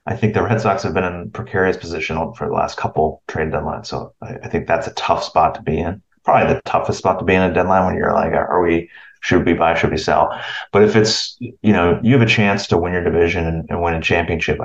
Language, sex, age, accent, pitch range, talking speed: English, male, 30-49, American, 85-110 Hz, 260 wpm